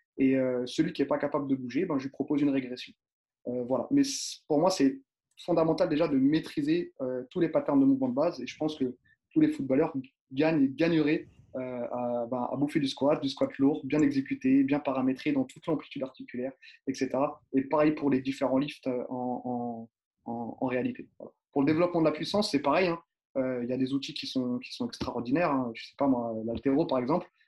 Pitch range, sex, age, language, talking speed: 130-175 Hz, male, 20-39, French, 225 wpm